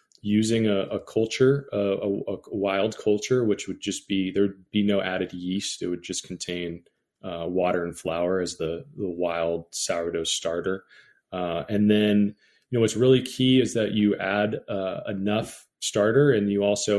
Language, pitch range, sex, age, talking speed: English, 95-110 Hz, male, 20-39, 175 wpm